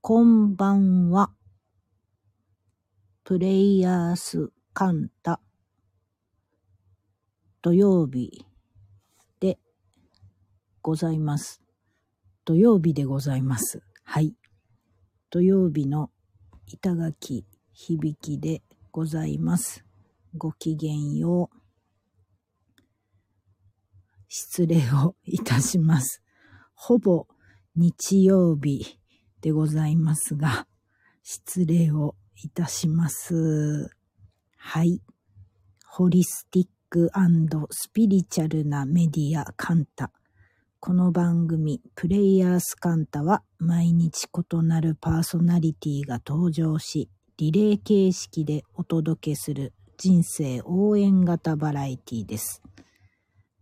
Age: 50-69